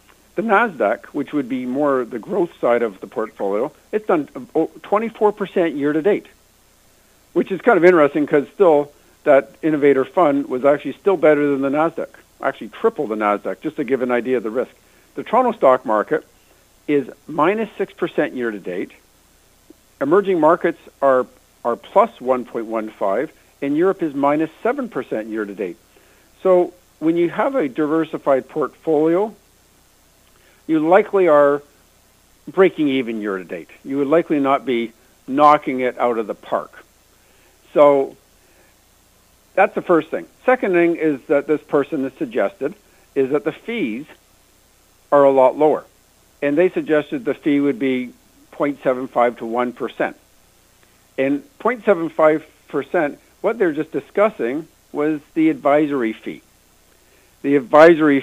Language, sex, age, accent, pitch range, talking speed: English, male, 50-69, American, 125-165 Hz, 135 wpm